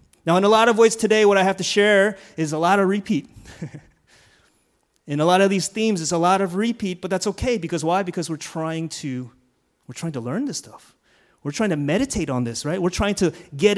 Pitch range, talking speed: 130-195 Hz, 235 wpm